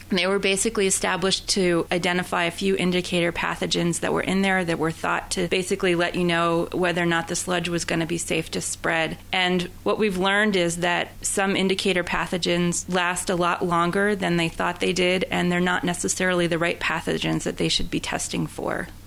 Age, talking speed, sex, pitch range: 30-49, 205 wpm, female, 170-195 Hz